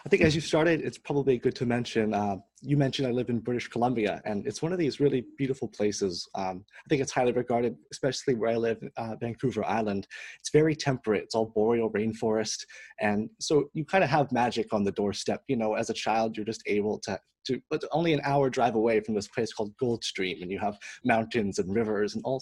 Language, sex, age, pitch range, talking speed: English, male, 30-49, 110-140 Hz, 230 wpm